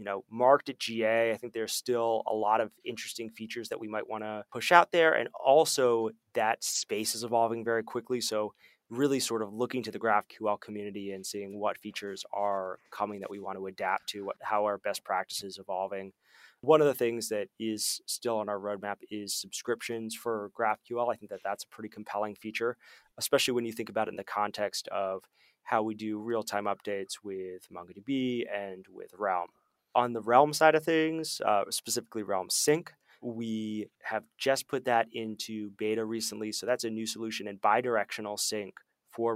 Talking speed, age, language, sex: 195 wpm, 20-39, English, male